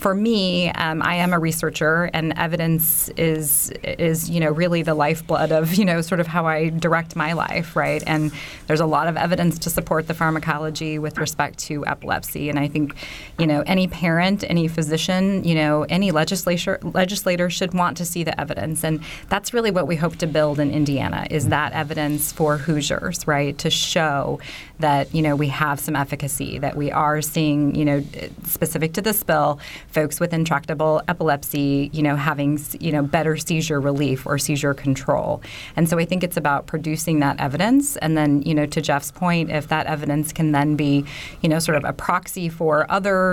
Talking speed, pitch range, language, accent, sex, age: 195 wpm, 150-170 Hz, English, American, female, 30-49